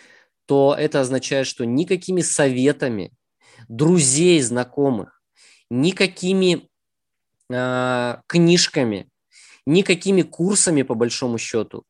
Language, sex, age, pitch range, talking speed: Russian, male, 20-39, 115-150 Hz, 80 wpm